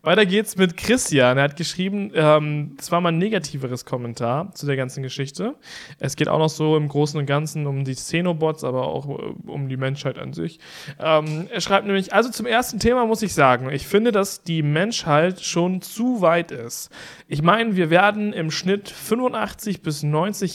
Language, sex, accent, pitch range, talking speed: German, male, German, 145-195 Hz, 195 wpm